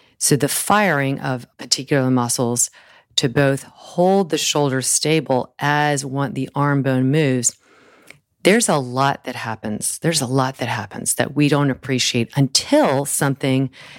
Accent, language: American, English